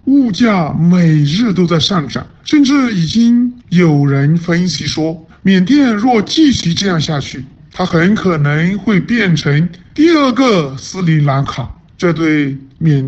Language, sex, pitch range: Chinese, male, 145-200 Hz